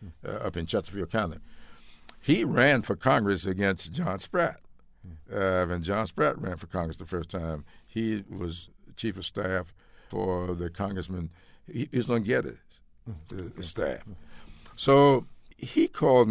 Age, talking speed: 60-79, 155 wpm